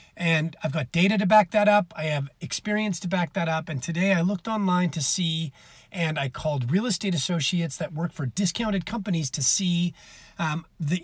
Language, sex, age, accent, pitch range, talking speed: English, male, 30-49, American, 155-200 Hz, 200 wpm